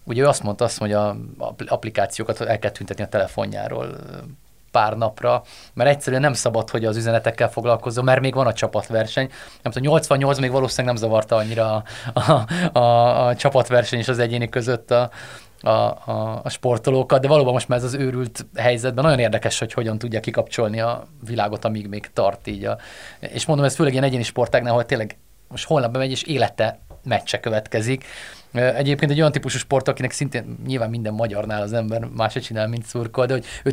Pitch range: 115-135 Hz